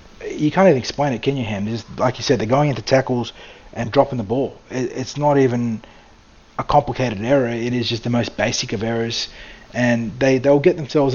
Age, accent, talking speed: 30-49, Australian, 210 wpm